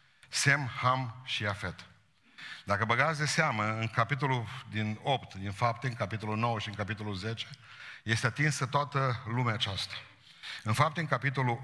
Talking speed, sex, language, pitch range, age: 155 wpm, male, Romanian, 105-130 Hz, 50-69